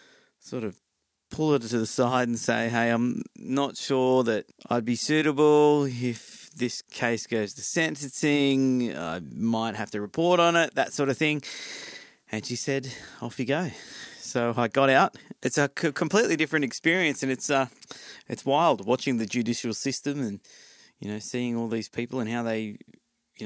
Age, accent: 30-49, Australian